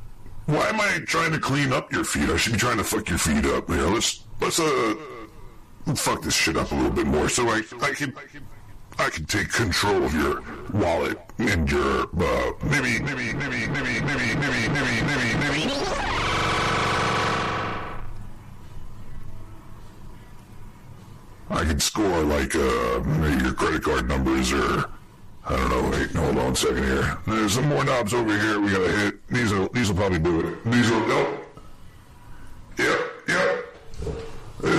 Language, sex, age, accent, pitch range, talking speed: English, female, 60-79, American, 100-145 Hz, 165 wpm